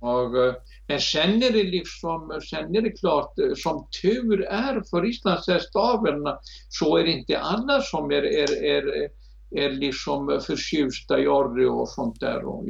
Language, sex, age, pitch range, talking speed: Swedish, male, 60-79, 135-195 Hz, 135 wpm